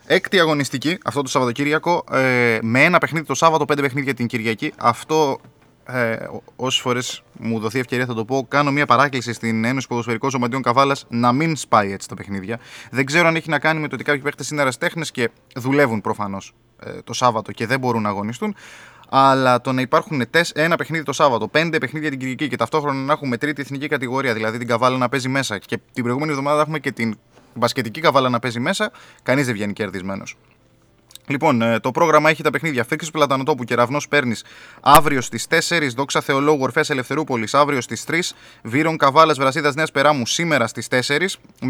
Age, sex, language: 20-39, male, Greek